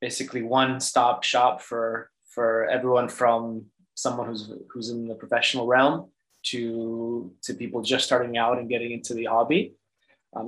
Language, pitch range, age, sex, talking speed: English, 115-130 Hz, 20-39, male, 150 wpm